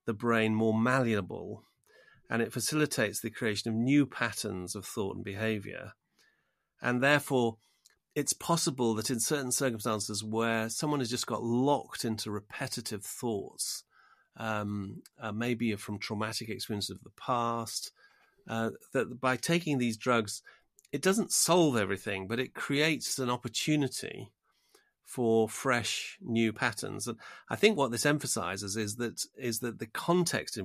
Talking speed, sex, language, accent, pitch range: 145 wpm, male, English, British, 105-130 Hz